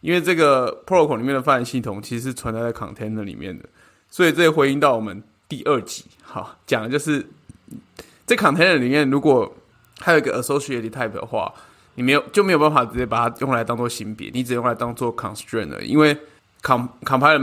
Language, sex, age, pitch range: Chinese, male, 20-39, 115-140 Hz